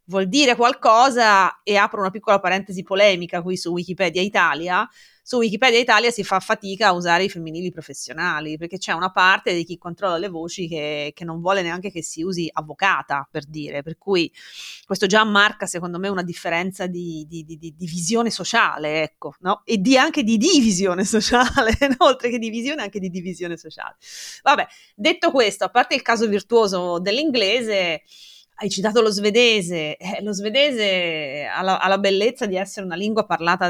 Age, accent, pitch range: 30-49, native, 175-210 Hz